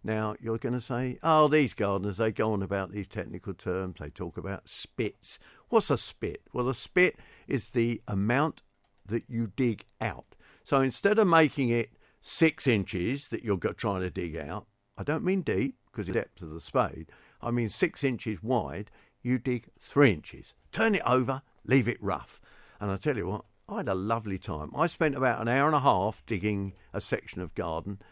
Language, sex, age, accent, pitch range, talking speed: English, male, 50-69, British, 95-135 Hz, 200 wpm